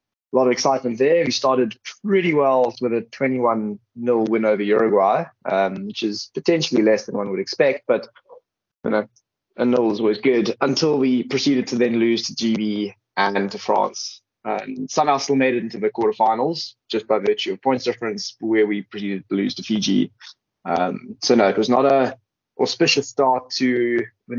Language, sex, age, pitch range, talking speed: English, male, 20-39, 105-130 Hz, 185 wpm